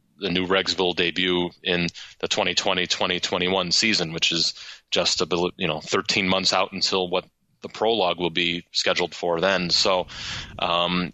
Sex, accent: male, American